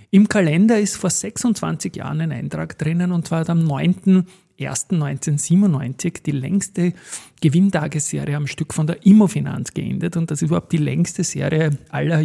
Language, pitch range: German, 145-175 Hz